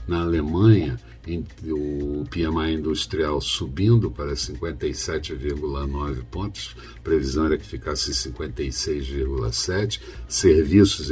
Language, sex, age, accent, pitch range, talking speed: Portuguese, male, 60-79, Brazilian, 70-85 Hz, 85 wpm